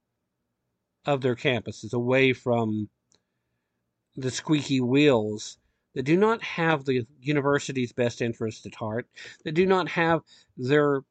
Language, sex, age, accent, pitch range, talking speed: English, male, 50-69, American, 105-145 Hz, 125 wpm